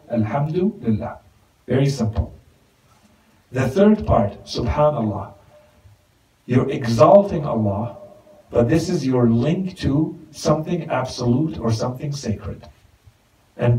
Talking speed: 95 wpm